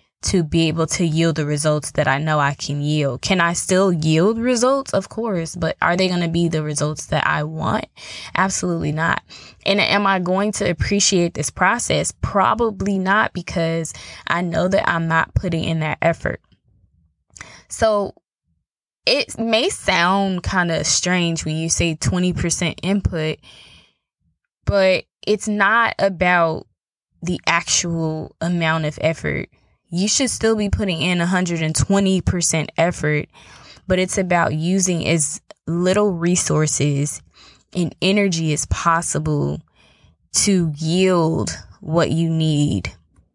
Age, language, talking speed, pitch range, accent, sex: 10-29, English, 135 wpm, 155-190 Hz, American, female